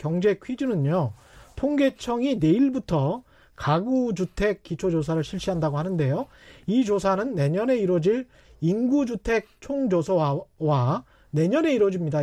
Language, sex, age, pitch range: Korean, male, 30-49, 170-240 Hz